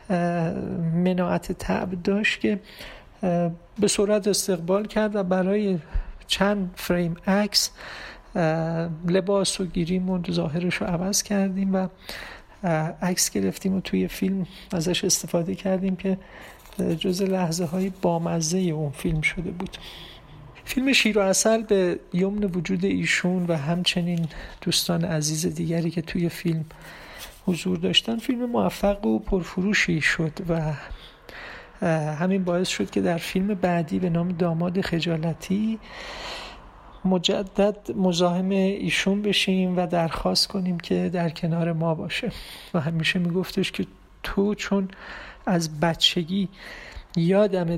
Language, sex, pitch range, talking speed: Persian, male, 170-195 Hz, 120 wpm